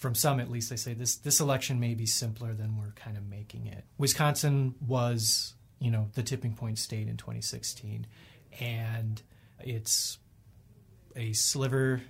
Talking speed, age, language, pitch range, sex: 160 wpm, 30-49, English, 110-130 Hz, male